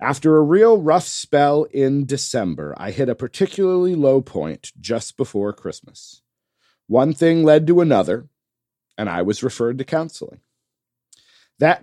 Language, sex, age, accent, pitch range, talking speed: English, male, 40-59, American, 110-155 Hz, 140 wpm